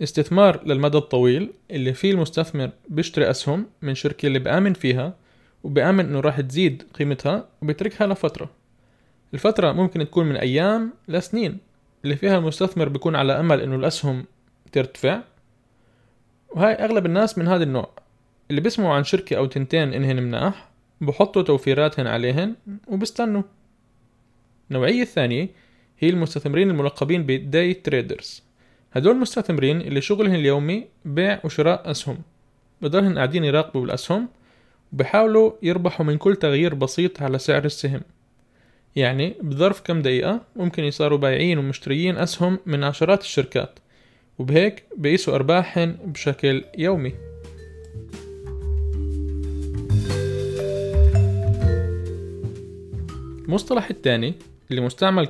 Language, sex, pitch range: Arabic, male, 125-180 Hz